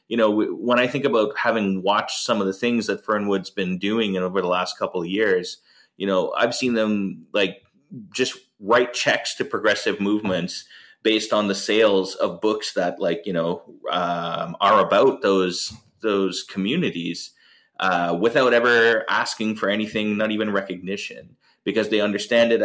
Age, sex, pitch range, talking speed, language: 30-49, male, 95-110 Hz, 165 wpm, English